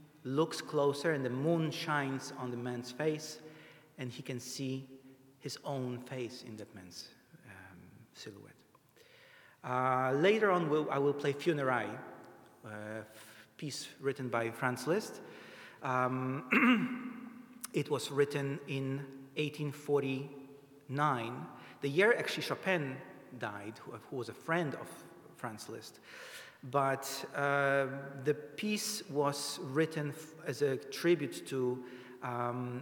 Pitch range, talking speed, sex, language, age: 120-145 Hz, 120 wpm, male, English, 40-59